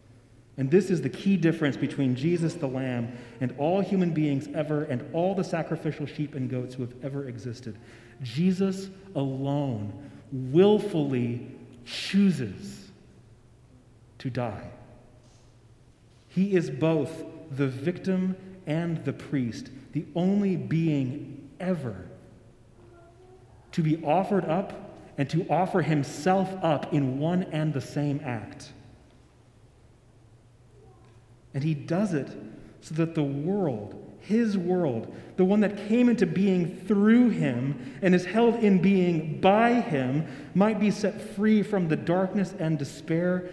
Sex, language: male, English